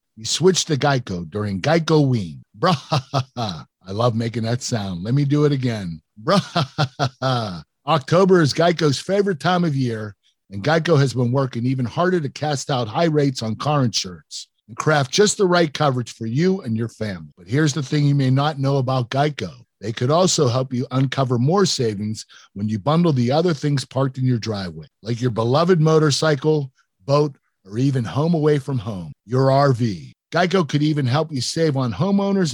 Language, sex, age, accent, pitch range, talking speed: English, male, 50-69, American, 120-160 Hz, 185 wpm